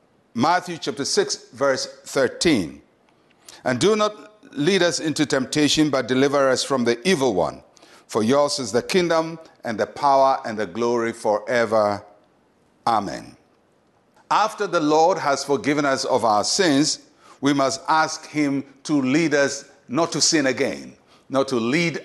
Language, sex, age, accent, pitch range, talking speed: English, male, 60-79, Nigerian, 125-165 Hz, 150 wpm